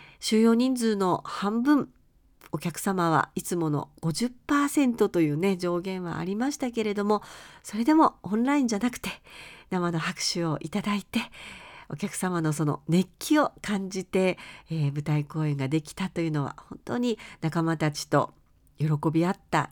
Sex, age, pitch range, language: female, 50-69, 170-250 Hz, Japanese